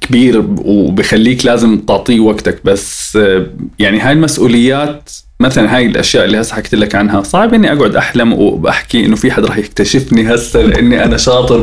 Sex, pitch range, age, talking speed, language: male, 100-125 Hz, 20-39, 155 wpm, Arabic